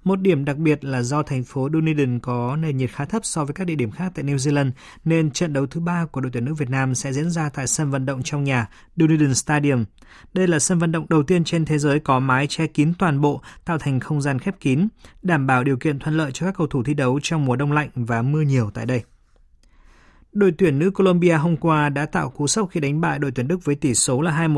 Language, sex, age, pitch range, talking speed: Vietnamese, male, 20-39, 130-165 Hz, 265 wpm